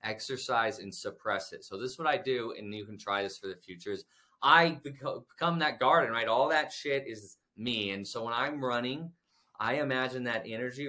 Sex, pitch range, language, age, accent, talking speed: male, 115-160 Hz, English, 20-39, American, 210 wpm